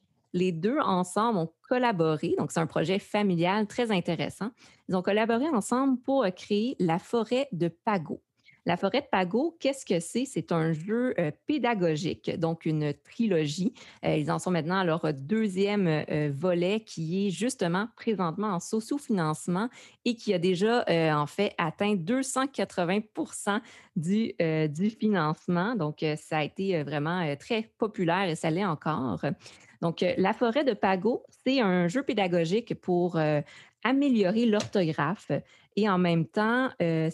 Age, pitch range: 30-49, 165-220 Hz